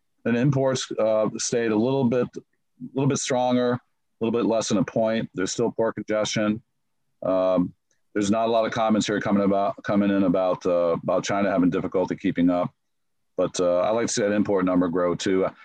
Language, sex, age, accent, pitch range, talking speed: English, male, 40-59, American, 90-115 Hz, 205 wpm